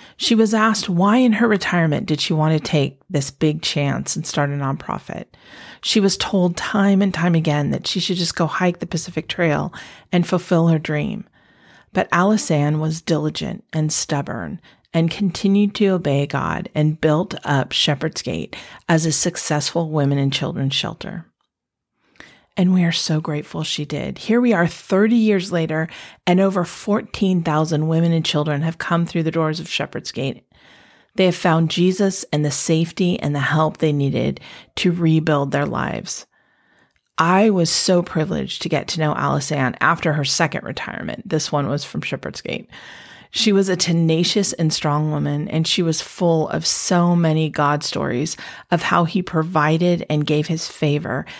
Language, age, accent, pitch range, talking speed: English, 40-59, American, 150-185 Hz, 175 wpm